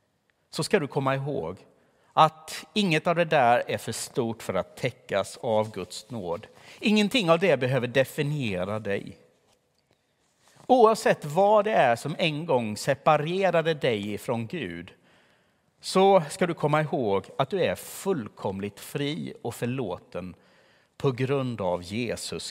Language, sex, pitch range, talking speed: Swedish, male, 115-165 Hz, 140 wpm